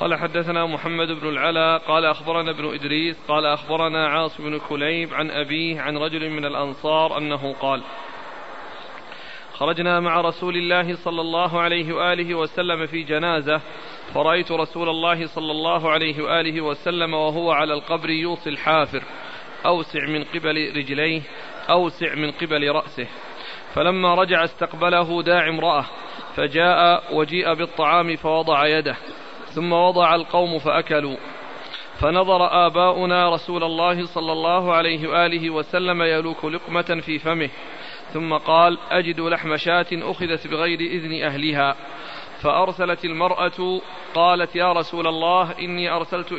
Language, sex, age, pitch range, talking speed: Arabic, male, 40-59, 155-175 Hz, 125 wpm